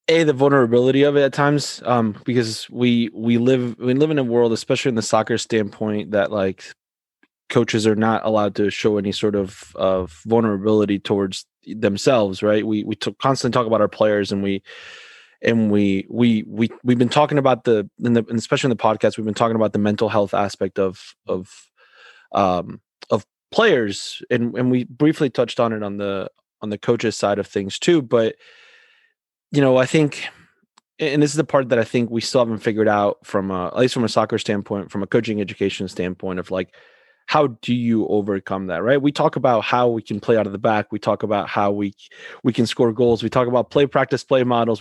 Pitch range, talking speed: 105-130 Hz, 210 wpm